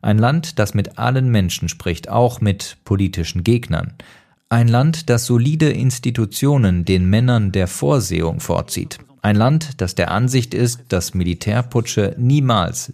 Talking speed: 140 wpm